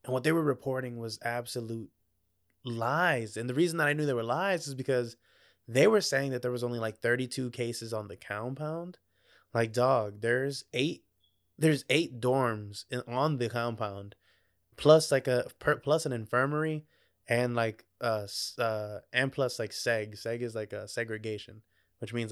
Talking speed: 175 wpm